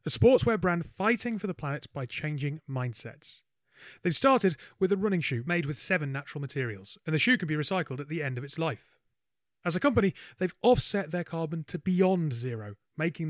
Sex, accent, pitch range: male, British, 140-180 Hz